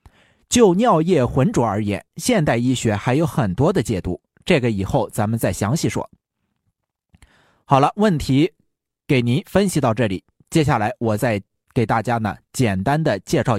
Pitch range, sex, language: 115-180 Hz, male, Chinese